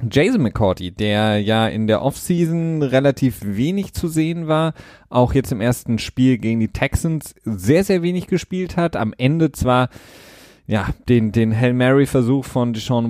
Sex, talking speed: male, 165 wpm